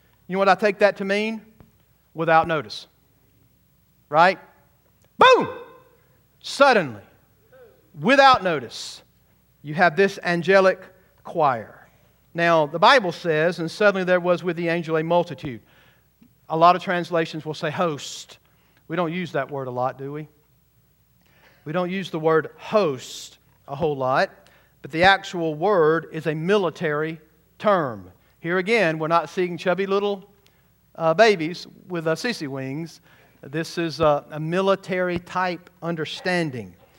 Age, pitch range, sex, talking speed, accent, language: 50-69, 150-185 Hz, male, 140 wpm, American, English